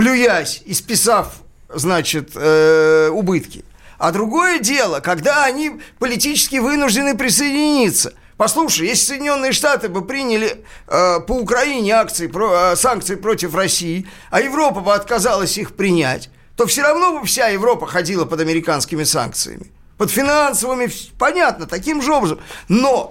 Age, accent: 50-69, native